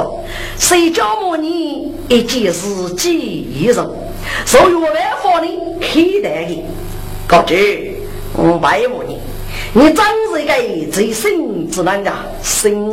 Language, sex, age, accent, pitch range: Chinese, female, 50-69, American, 260-375 Hz